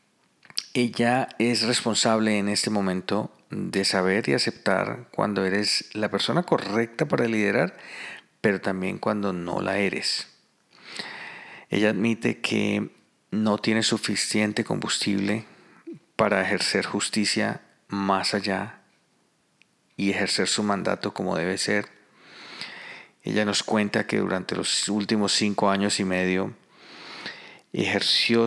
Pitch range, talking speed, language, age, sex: 100-115 Hz, 115 wpm, Spanish, 40-59, male